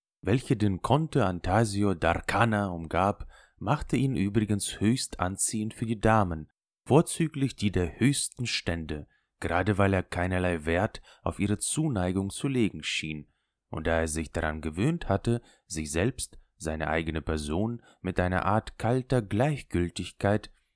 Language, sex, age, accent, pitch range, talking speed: German, male, 30-49, German, 85-115 Hz, 135 wpm